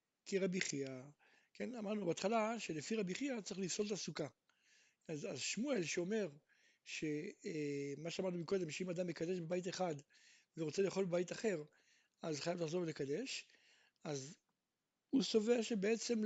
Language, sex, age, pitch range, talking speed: Hebrew, male, 60-79, 165-225 Hz, 135 wpm